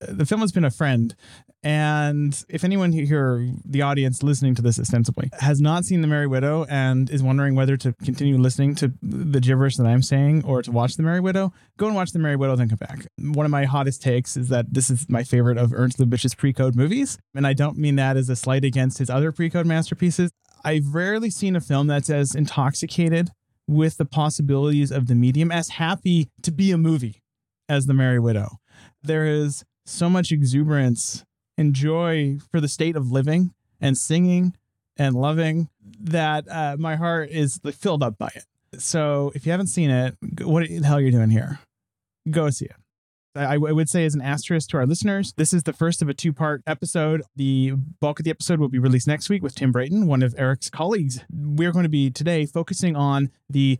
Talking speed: 210 wpm